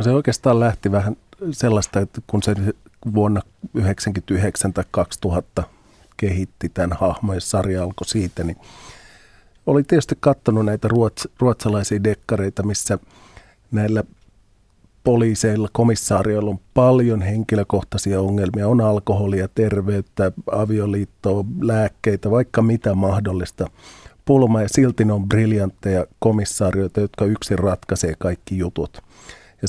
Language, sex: Finnish, male